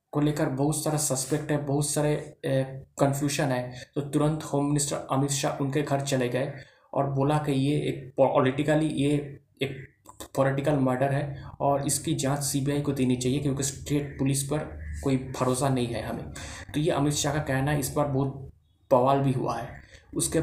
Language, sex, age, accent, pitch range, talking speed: Hindi, male, 20-39, native, 130-145 Hz, 180 wpm